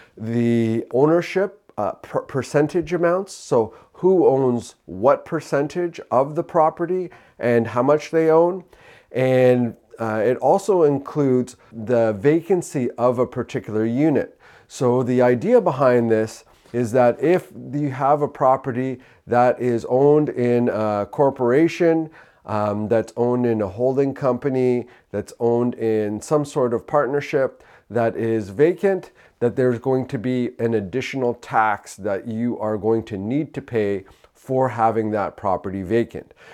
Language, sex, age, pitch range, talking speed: English, male, 40-59, 115-145 Hz, 140 wpm